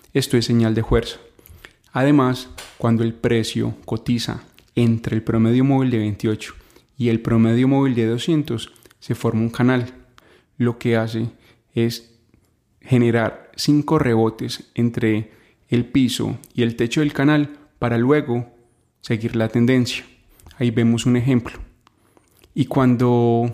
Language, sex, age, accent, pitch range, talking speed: Spanish, male, 20-39, Colombian, 115-130 Hz, 135 wpm